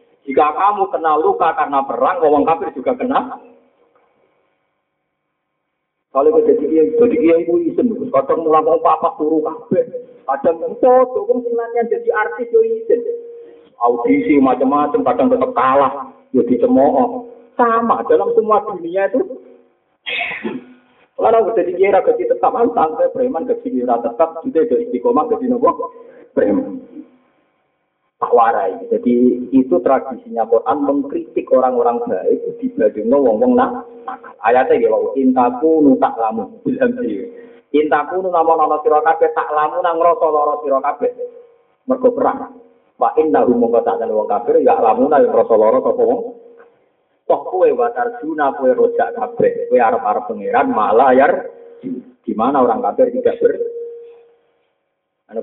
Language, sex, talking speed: Malay, male, 135 wpm